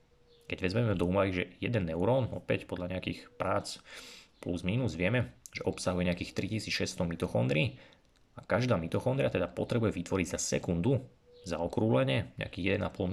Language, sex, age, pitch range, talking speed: Slovak, male, 30-49, 90-110 Hz, 140 wpm